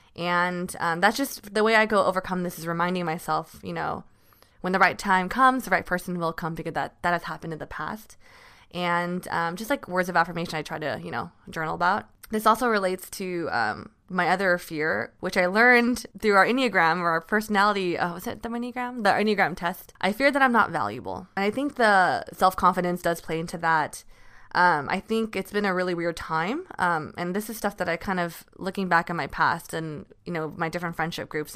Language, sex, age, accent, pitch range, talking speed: English, female, 20-39, American, 165-205 Hz, 225 wpm